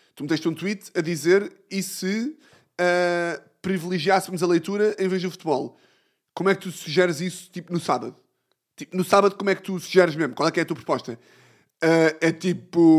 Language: Portuguese